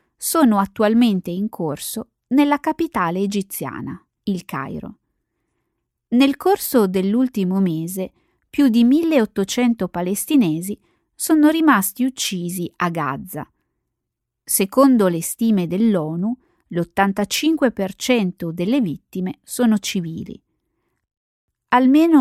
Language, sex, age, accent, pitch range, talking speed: Italian, female, 20-39, native, 180-255 Hz, 85 wpm